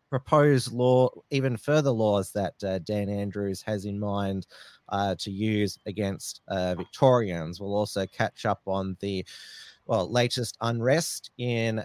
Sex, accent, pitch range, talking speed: male, Australian, 100-125 Hz, 140 wpm